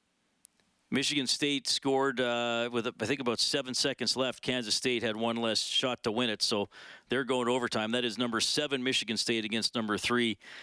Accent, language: American, English